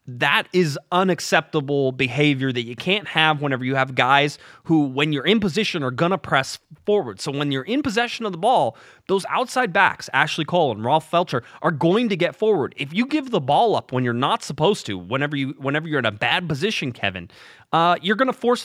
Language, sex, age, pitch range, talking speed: English, male, 30-49, 125-180 Hz, 220 wpm